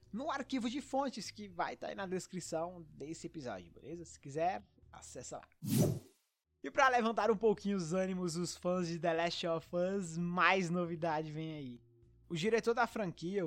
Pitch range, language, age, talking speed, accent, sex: 160-205 Hz, English, 20-39, 175 wpm, Brazilian, male